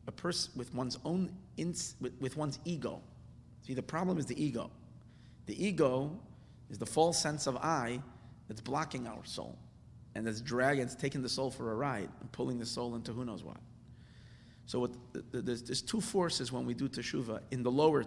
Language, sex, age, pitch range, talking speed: English, male, 30-49, 115-140 Hz, 195 wpm